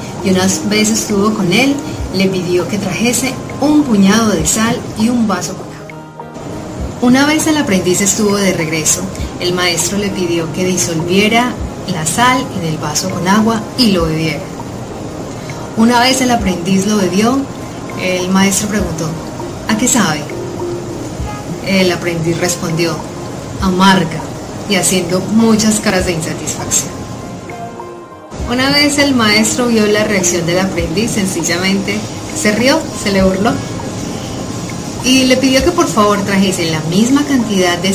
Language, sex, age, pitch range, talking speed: Italian, female, 30-49, 170-225 Hz, 140 wpm